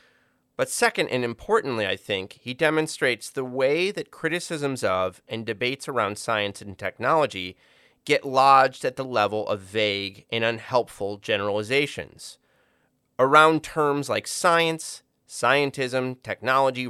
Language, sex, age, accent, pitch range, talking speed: English, male, 30-49, American, 110-150 Hz, 125 wpm